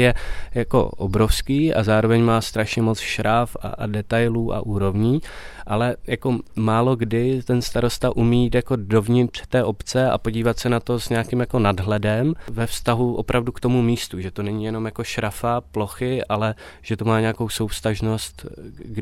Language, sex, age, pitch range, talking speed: Czech, male, 20-39, 110-120 Hz, 170 wpm